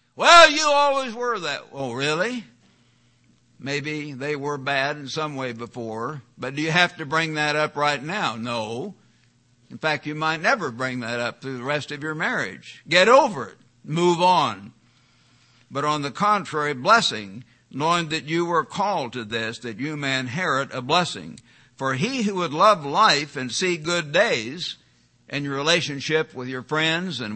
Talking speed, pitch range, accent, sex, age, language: 175 wpm, 135-195 Hz, American, male, 60-79, English